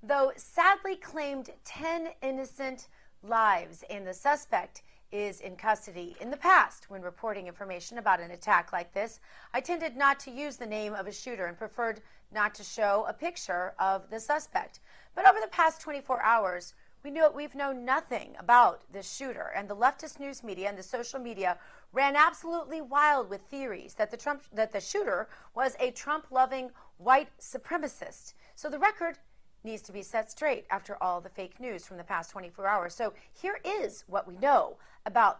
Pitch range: 195-285 Hz